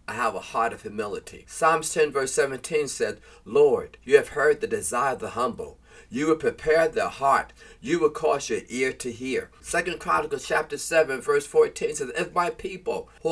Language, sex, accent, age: English, male, American, 40-59